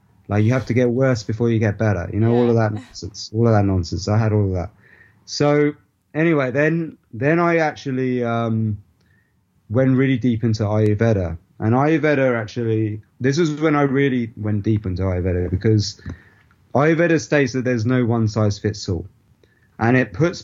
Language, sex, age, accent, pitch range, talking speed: English, male, 20-39, British, 105-125 Hz, 175 wpm